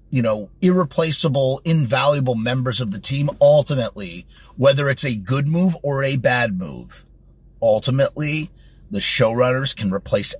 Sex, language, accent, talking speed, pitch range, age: male, English, American, 135 wpm, 120-165 Hz, 30-49